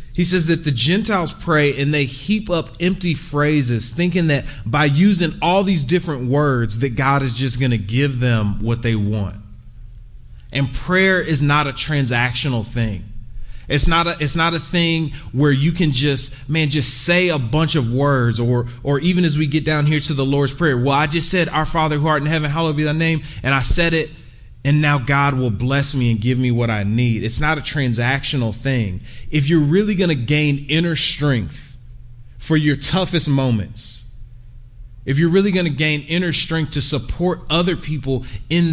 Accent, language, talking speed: American, English, 200 wpm